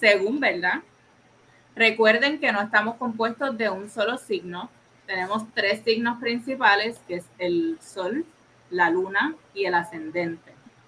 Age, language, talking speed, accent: 20-39, Spanish, 130 wpm, Venezuelan